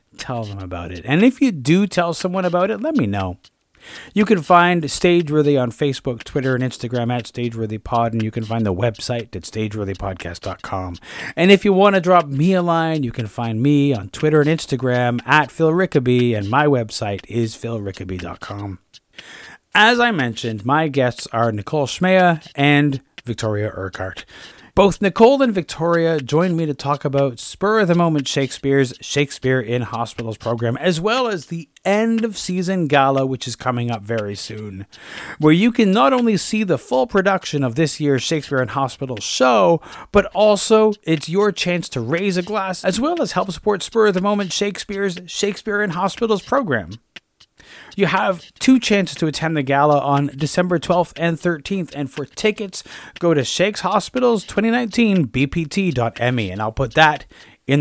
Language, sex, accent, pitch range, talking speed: English, male, American, 120-185 Hz, 180 wpm